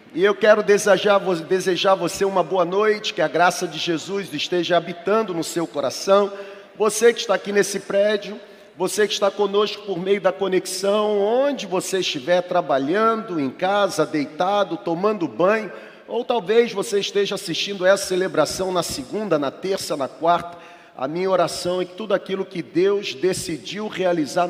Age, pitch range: 40-59, 160-195 Hz